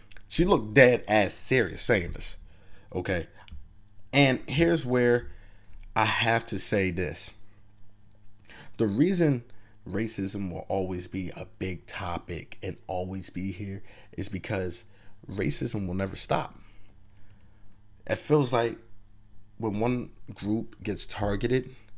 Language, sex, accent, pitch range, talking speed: English, male, American, 95-110 Hz, 115 wpm